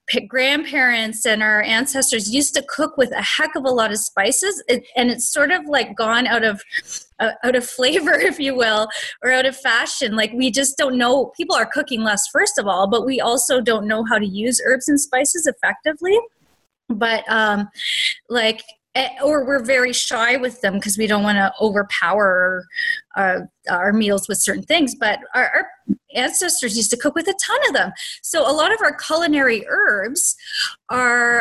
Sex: female